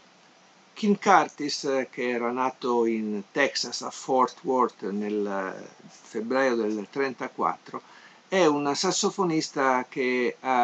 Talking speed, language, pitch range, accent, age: 105 wpm, Italian, 120-145 Hz, native, 50-69